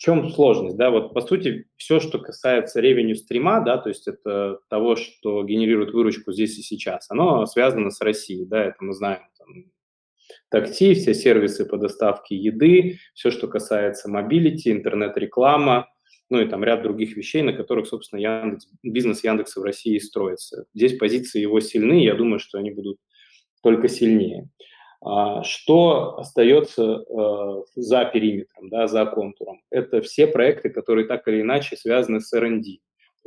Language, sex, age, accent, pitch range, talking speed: Russian, male, 20-39, native, 105-140 Hz, 160 wpm